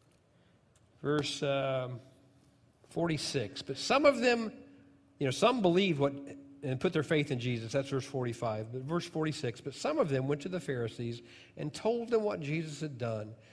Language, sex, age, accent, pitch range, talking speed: English, male, 50-69, American, 115-145 Hz, 175 wpm